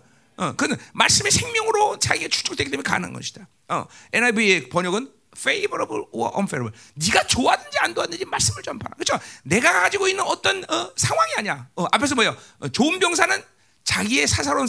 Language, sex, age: Korean, male, 40-59